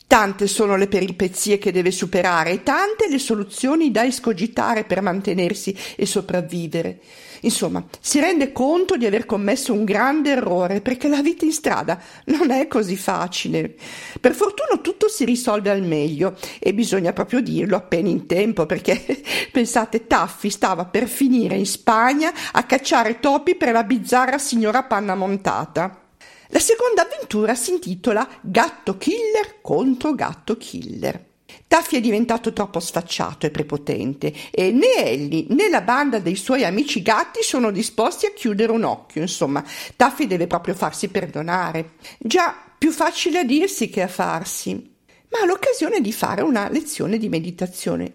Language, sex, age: English, female, 50-69